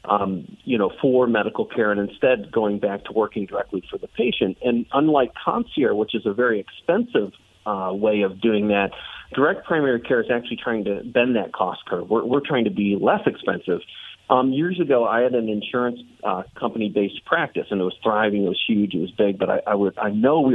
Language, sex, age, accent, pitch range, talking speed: English, male, 40-59, American, 105-155 Hz, 215 wpm